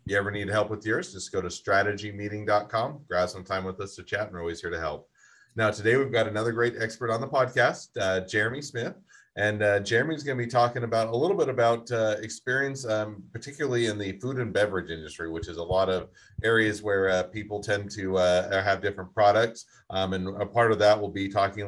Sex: male